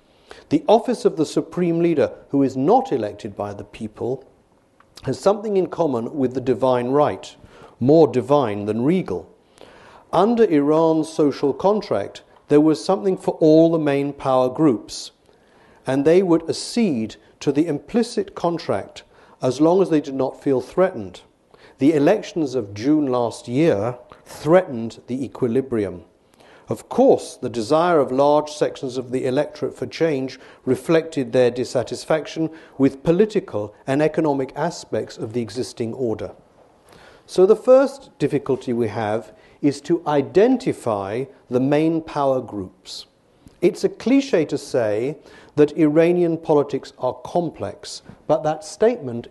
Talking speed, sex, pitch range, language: 140 wpm, male, 130-165 Hz, English